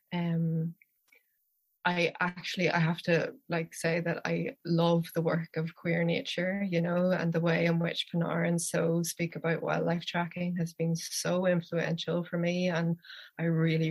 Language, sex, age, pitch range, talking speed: English, female, 20-39, 165-175 Hz, 170 wpm